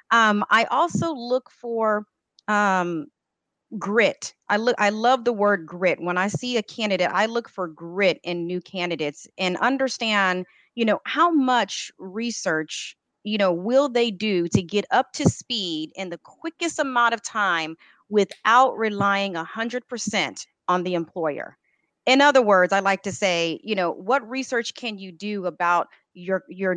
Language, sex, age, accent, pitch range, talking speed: English, female, 30-49, American, 180-235 Hz, 160 wpm